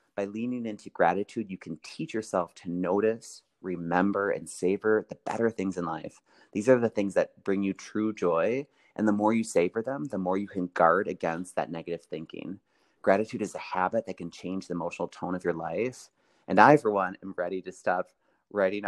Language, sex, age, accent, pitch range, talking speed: English, male, 30-49, American, 90-110 Hz, 205 wpm